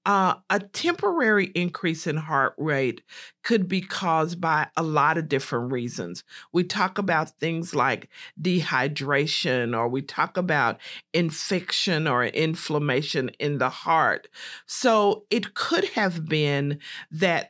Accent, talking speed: American, 130 wpm